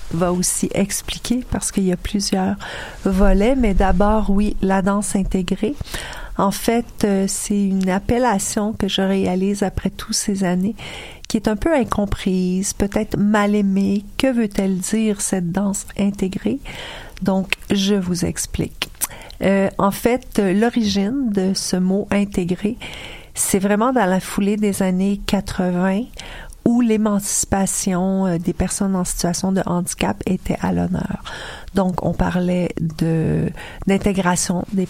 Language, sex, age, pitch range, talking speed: French, female, 50-69, 180-205 Hz, 130 wpm